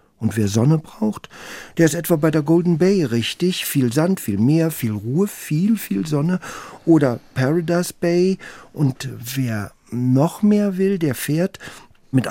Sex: male